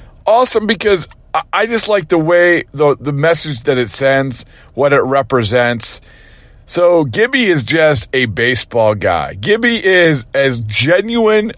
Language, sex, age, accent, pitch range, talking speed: English, male, 40-59, American, 125-165 Hz, 140 wpm